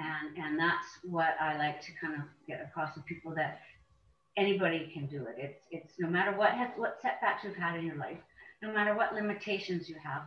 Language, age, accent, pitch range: English, 50-69, American, 170-200 Hz